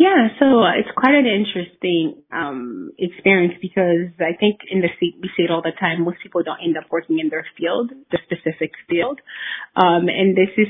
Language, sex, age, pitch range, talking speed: English, female, 30-49, 165-200 Hz, 200 wpm